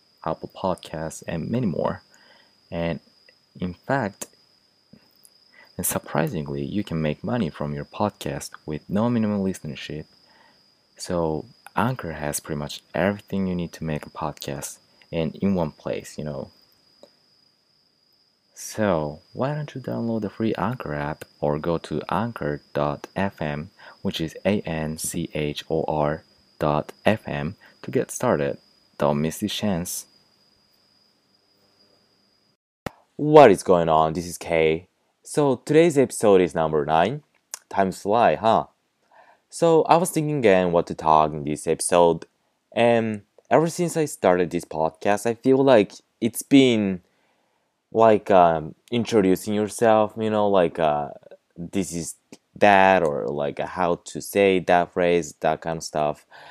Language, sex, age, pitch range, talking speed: English, male, 30-49, 80-110 Hz, 130 wpm